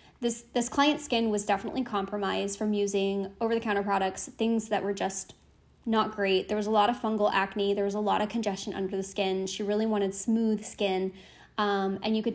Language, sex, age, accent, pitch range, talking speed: English, female, 10-29, American, 195-235 Hz, 205 wpm